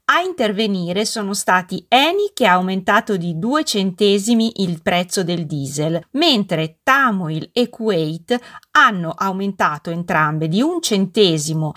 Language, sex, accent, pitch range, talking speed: Italian, female, native, 175-240 Hz, 125 wpm